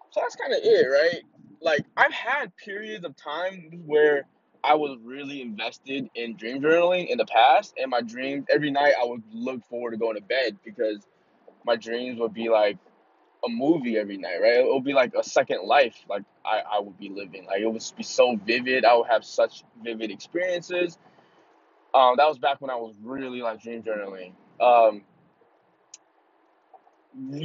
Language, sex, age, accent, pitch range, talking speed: English, male, 20-39, American, 115-170 Hz, 185 wpm